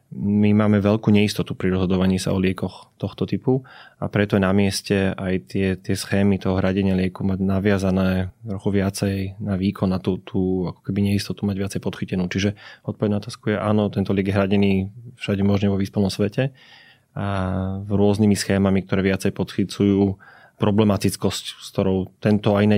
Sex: male